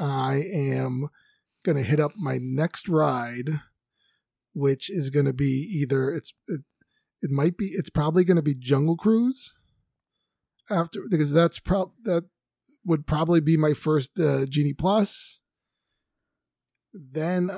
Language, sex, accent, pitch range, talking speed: English, male, American, 140-180 Hz, 140 wpm